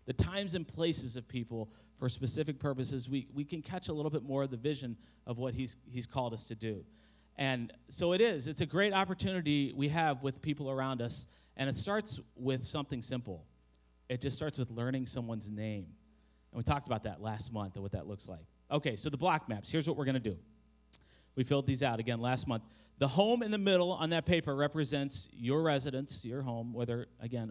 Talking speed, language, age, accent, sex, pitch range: 215 wpm, English, 40-59, American, male, 110-145 Hz